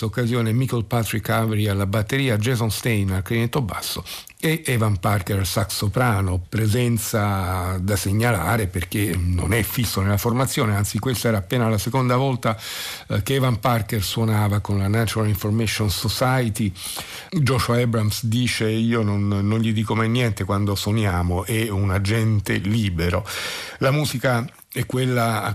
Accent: native